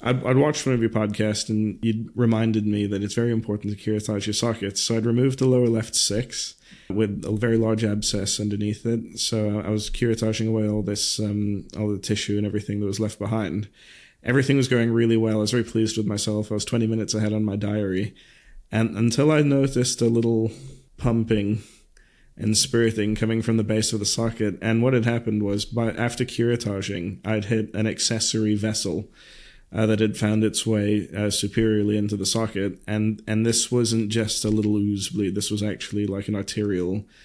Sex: male